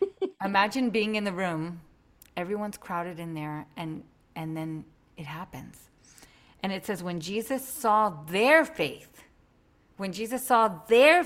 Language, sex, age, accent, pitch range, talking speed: English, female, 40-59, American, 165-215 Hz, 140 wpm